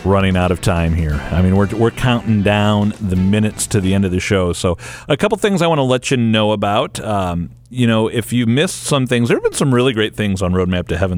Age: 40-59